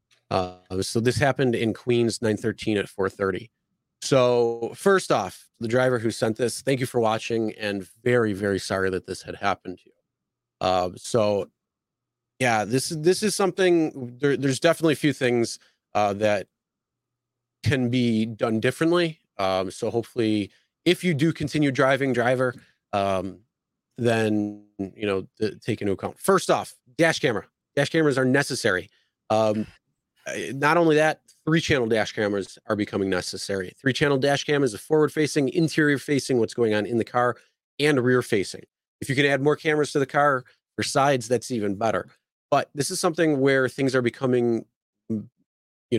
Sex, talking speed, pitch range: male, 160 wpm, 110-145 Hz